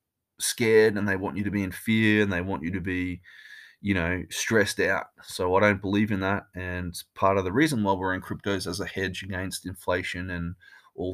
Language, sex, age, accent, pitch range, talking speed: English, male, 20-39, Australian, 95-125 Hz, 220 wpm